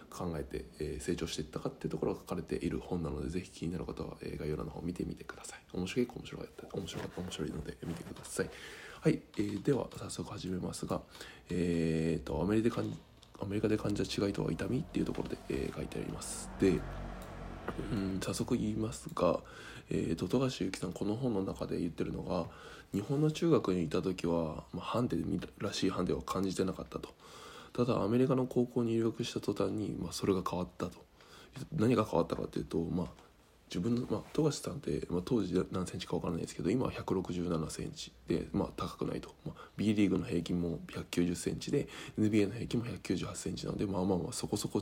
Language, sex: Japanese, male